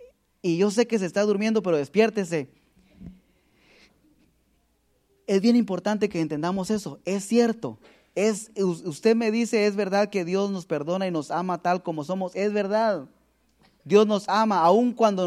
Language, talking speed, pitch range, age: Spanish, 155 wpm, 175-220 Hz, 20-39